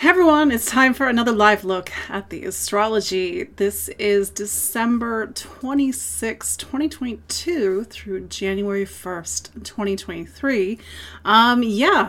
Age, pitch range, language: 30-49, 190-225 Hz, English